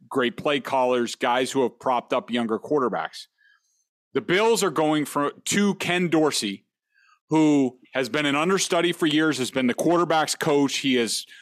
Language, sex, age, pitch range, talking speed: English, male, 40-59, 130-175 Hz, 170 wpm